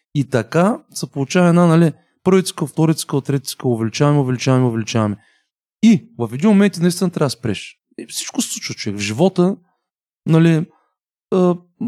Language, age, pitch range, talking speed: Bulgarian, 30-49, 110-150 Hz, 135 wpm